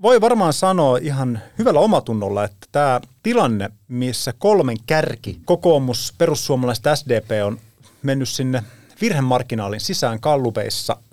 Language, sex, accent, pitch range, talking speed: Finnish, male, native, 110-150 Hz, 115 wpm